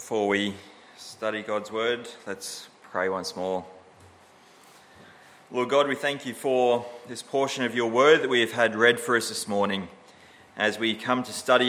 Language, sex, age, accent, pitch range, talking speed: English, male, 30-49, Australian, 110-140 Hz, 175 wpm